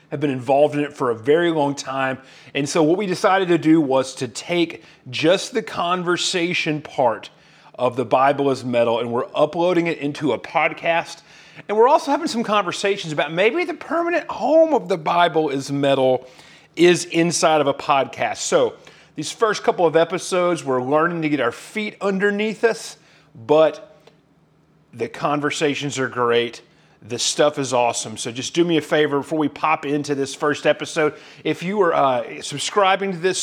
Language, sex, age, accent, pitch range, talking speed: English, male, 40-59, American, 135-175 Hz, 180 wpm